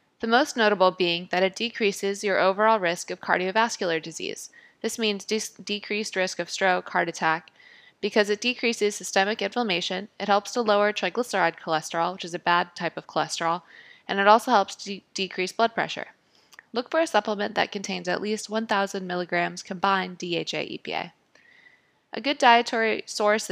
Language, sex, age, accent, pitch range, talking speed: English, female, 20-39, American, 180-220 Hz, 165 wpm